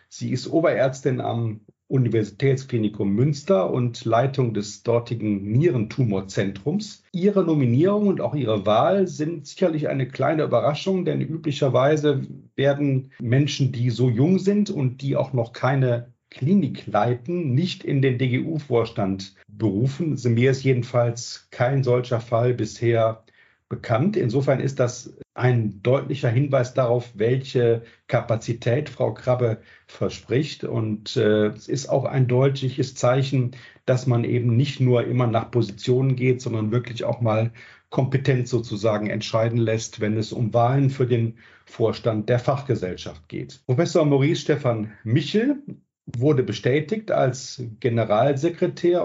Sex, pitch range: male, 115-140 Hz